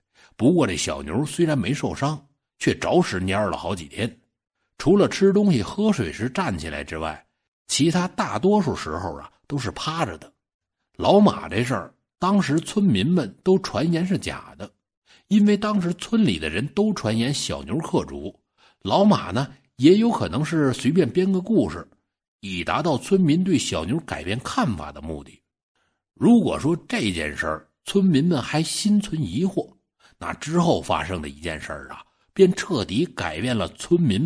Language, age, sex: Chinese, 60-79, male